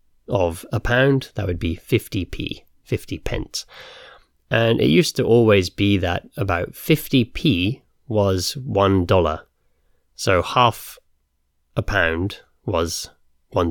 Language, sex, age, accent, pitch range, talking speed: English, male, 30-49, British, 85-115 Hz, 120 wpm